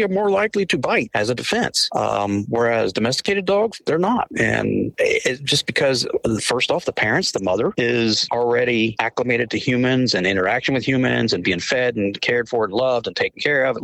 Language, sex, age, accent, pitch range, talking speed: English, male, 40-59, American, 115-155 Hz, 195 wpm